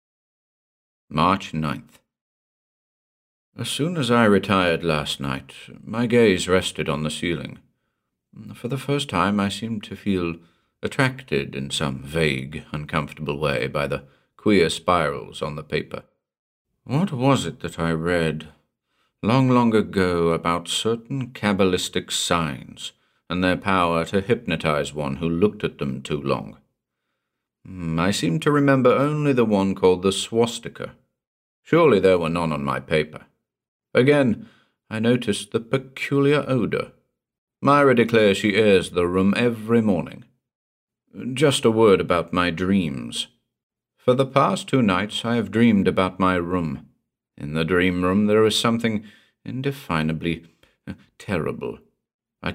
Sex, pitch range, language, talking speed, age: male, 80-115 Hz, English, 135 wpm, 50-69